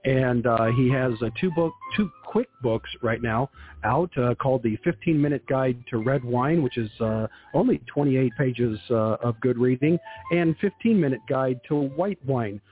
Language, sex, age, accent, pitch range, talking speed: English, male, 50-69, American, 120-155 Hz, 175 wpm